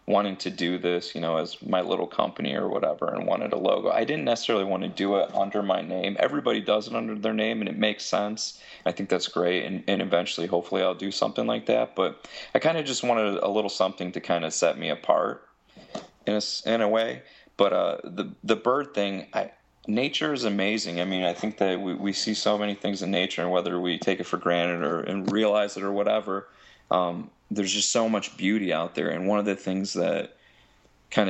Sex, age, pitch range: male, 20-39, 90-105 Hz